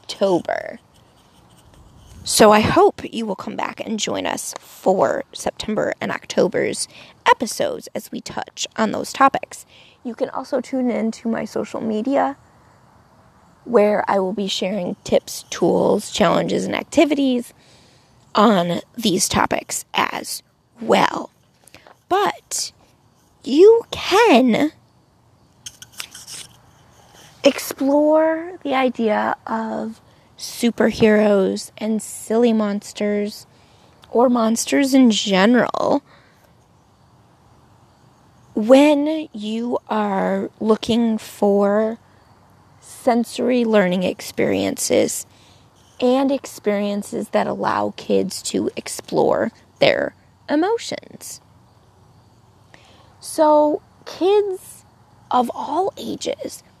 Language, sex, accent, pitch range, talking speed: English, female, American, 210-280 Hz, 90 wpm